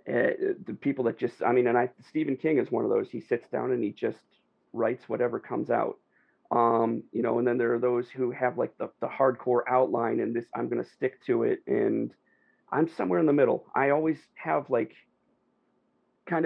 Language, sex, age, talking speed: English, male, 40-59, 215 wpm